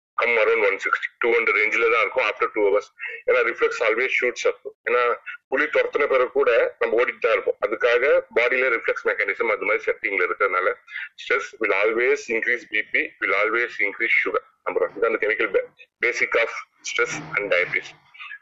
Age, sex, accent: 30-49, male, native